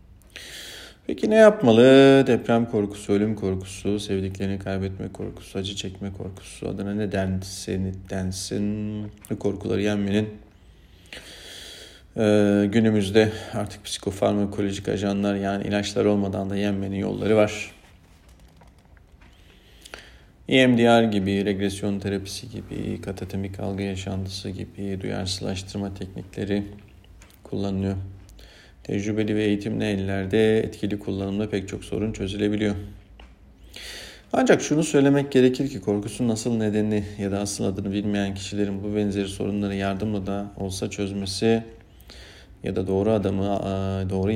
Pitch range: 95-105 Hz